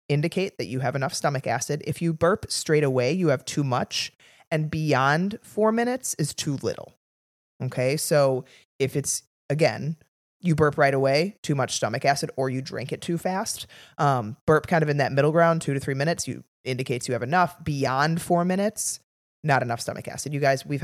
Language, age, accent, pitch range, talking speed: English, 20-39, American, 130-165 Hz, 200 wpm